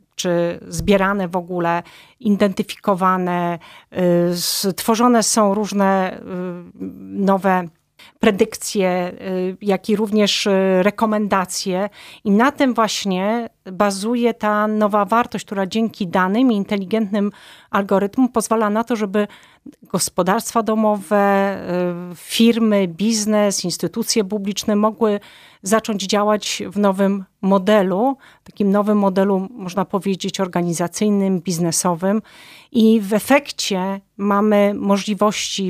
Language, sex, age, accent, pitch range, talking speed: Polish, female, 40-59, native, 185-210 Hz, 95 wpm